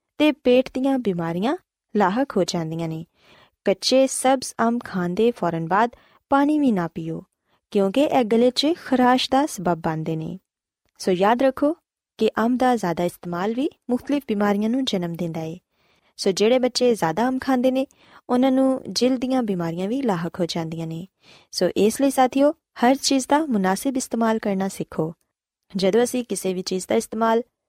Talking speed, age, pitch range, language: 145 wpm, 20-39, 185-260 Hz, Punjabi